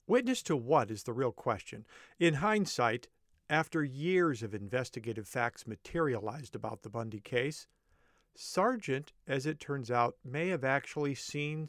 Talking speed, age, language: 145 wpm, 50-69, English